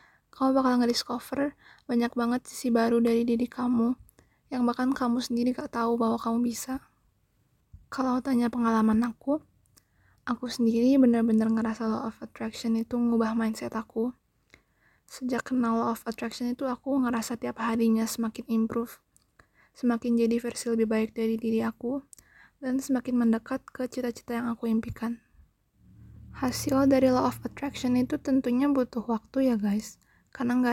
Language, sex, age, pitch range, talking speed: Indonesian, female, 20-39, 225-250 Hz, 145 wpm